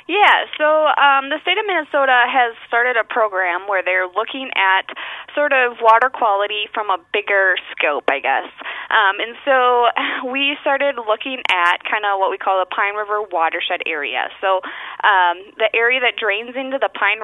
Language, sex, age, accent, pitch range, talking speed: English, female, 20-39, American, 185-245 Hz, 180 wpm